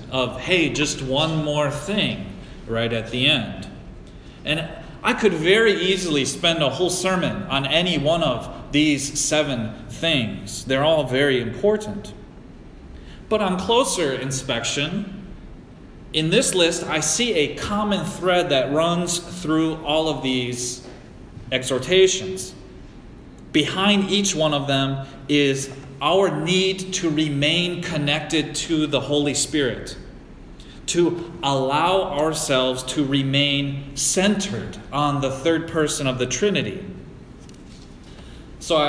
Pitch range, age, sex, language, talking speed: 135-180 Hz, 30-49, male, English, 120 wpm